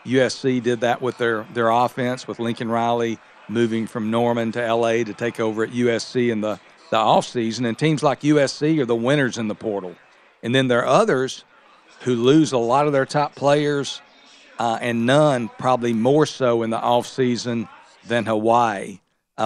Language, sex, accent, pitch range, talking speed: English, male, American, 115-135 Hz, 180 wpm